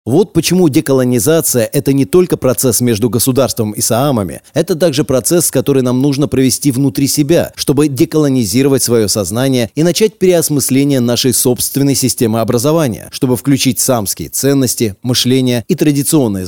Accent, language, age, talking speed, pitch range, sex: native, Russian, 30-49, 140 wpm, 115-150 Hz, male